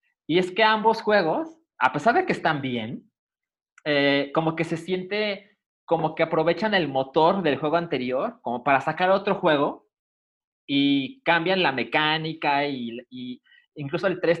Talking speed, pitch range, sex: 160 wpm, 135-185 Hz, male